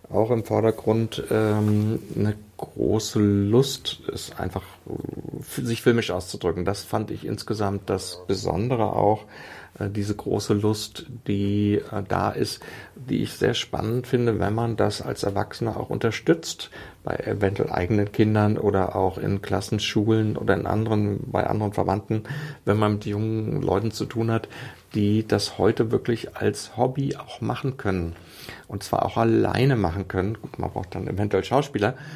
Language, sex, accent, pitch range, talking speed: German, male, German, 100-110 Hz, 155 wpm